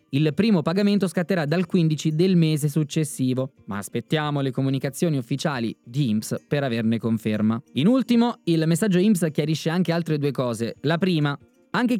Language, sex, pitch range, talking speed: Italian, male, 135-180 Hz, 160 wpm